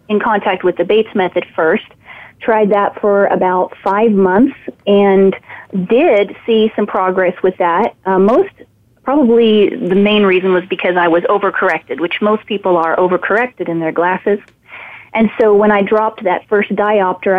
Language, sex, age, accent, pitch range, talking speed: English, female, 30-49, American, 185-215 Hz, 160 wpm